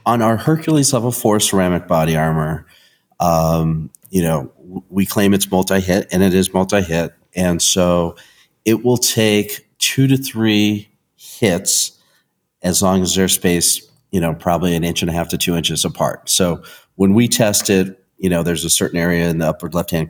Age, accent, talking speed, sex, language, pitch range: 40-59, American, 180 wpm, male, English, 85-105 Hz